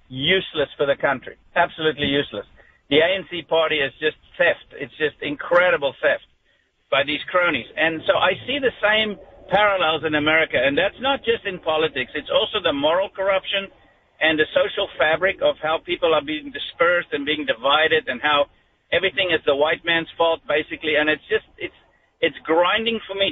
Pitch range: 150-190 Hz